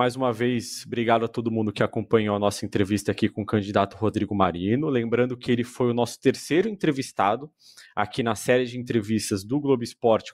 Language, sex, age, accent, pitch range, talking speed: Portuguese, male, 20-39, Brazilian, 115-145 Hz, 195 wpm